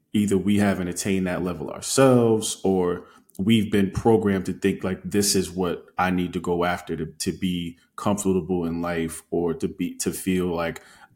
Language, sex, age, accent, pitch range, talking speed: English, male, 20-39, American, 90-100 Hz, 185 wpm